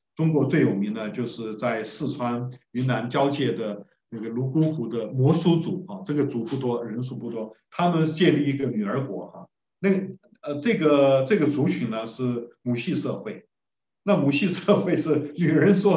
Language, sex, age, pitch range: Chinese, male, 50-69, 110-150 Hz